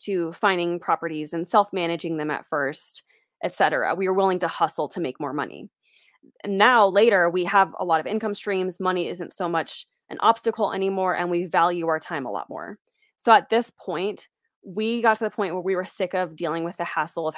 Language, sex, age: English, female, 20-39